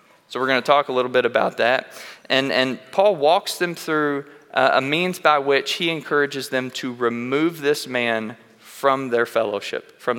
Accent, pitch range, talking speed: American, 120-145 Hz, 185 wpm